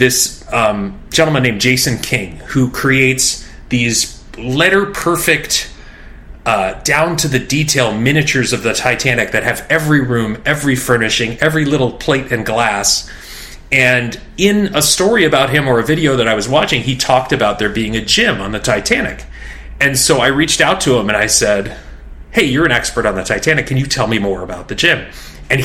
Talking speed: 175 wpm